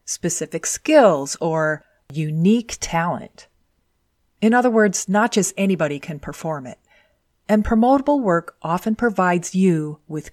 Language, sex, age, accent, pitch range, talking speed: English, female, 30-49, American, 145-205 Hz, 120 wpm